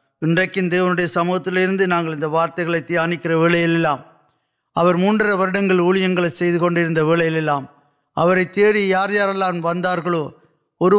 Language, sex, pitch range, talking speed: Urdu, male, 165-190 Hz, 65 wpm